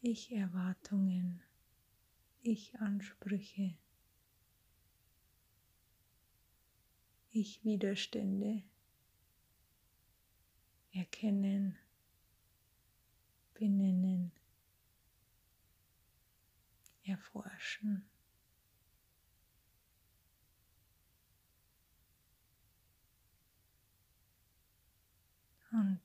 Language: German